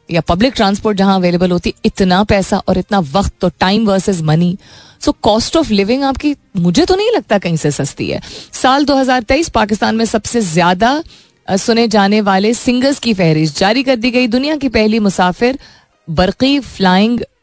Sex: female